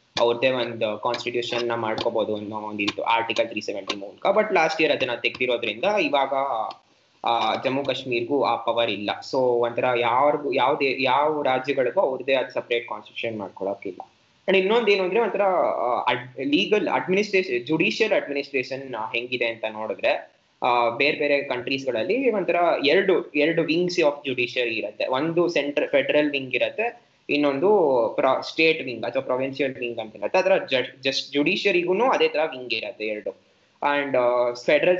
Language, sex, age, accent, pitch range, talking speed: Kannada, male, 20-39, native, 120-160 Hz, 130 wpm